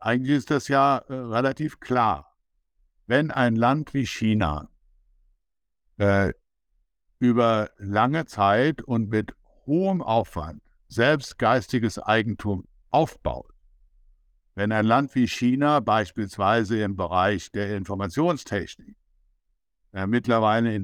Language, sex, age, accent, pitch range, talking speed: German, male, 60-79, German, 95-135 Hz, 105 wpm